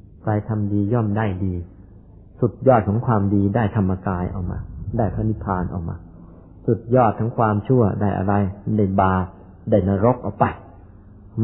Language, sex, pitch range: Thai, male, 100-115 Hz